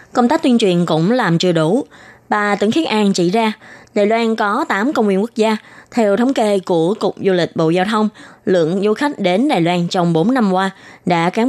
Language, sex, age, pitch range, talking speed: Vietnamese, female, 20-39, 175-225 Hz, 230 wpm